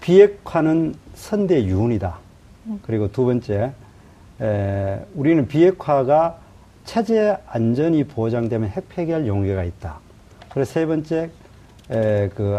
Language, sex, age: Korean, male, 40-59